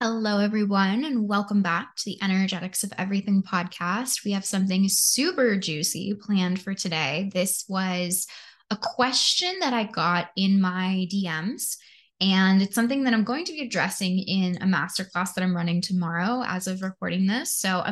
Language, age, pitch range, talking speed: English, 10-29, 185-225 Hz, 170 wpm